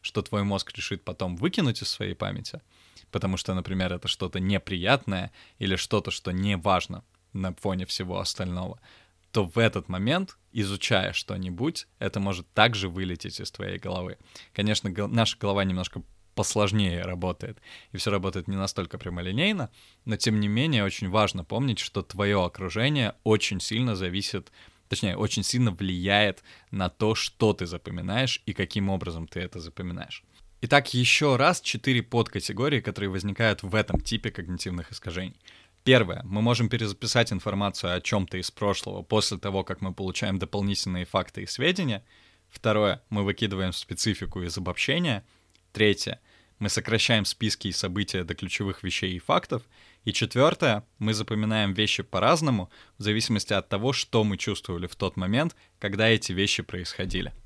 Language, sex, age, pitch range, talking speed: Russian, male, 20-39, 95-110 Hz, 150 wpm